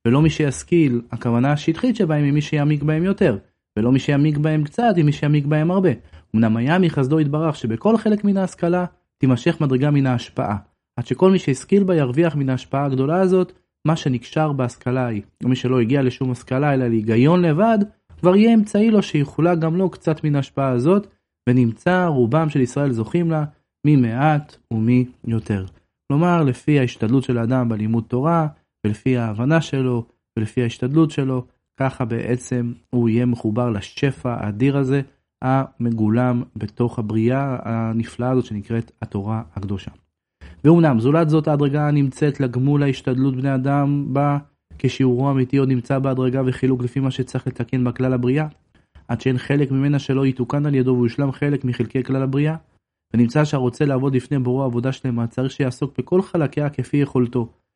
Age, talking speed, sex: 30-49, 145 wpm, male